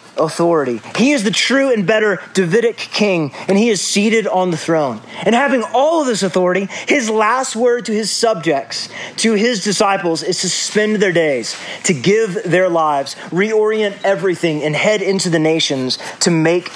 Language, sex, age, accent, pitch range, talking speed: English, male, 30-49, American, 165-220 Hz, 175 wpm